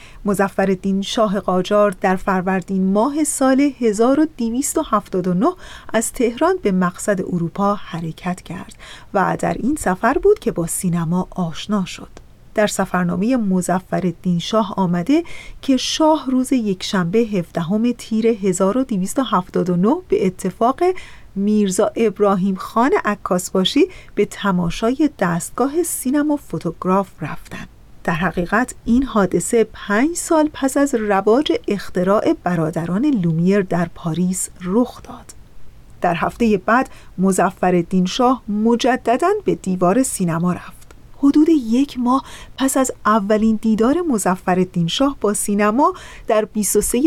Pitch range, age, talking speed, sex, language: 185-250 Hz, 30-49, 115 wpm, female, Persian